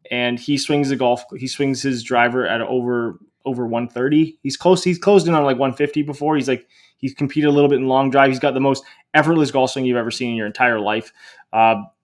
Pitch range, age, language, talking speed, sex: 125-145 Hz, 20-39, English, 235 wpm, male